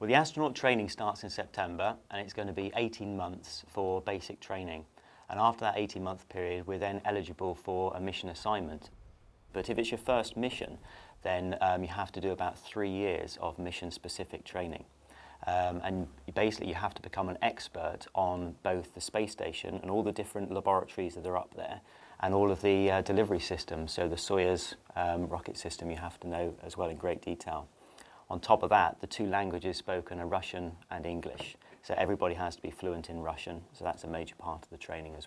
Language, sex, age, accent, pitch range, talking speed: English, male, 30-49, British, 85-100 Hz, 205 wpm